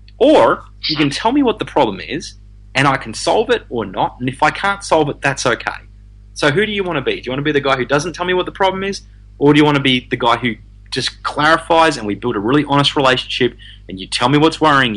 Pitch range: 100-140 Hz